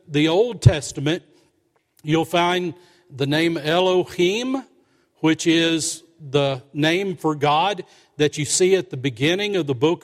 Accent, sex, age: American, male, 50-69